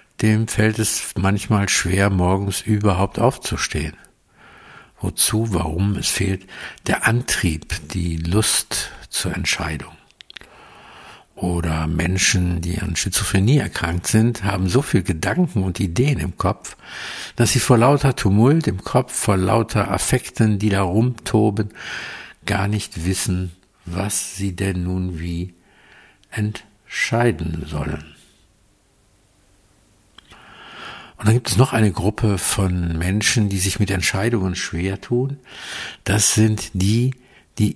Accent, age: German, 60-79